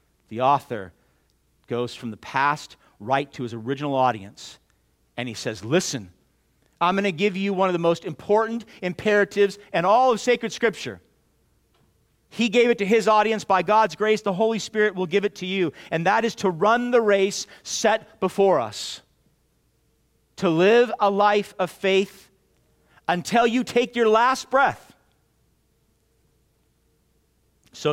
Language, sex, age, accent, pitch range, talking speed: English, male, 40-59, American, 160-215 Hz, 150 wpm